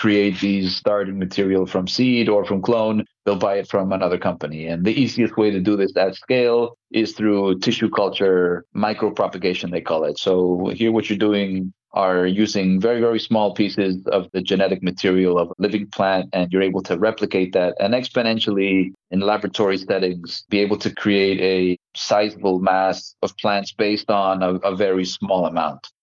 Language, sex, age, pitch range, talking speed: English, male, 30-49, 95-105 Hz, 180 wpm